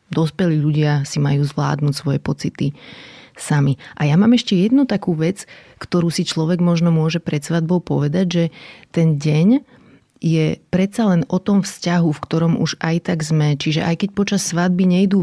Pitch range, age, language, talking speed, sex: 155-180 Hz, 30-49, Slovak, 175 wpm, female